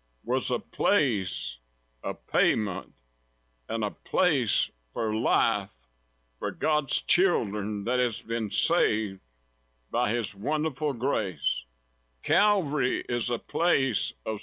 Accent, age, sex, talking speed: American, 60-79, male, 110 wpm